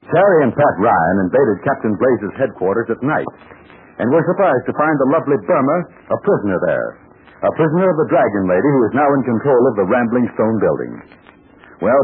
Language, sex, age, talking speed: English, male, 60-79, 190 wpm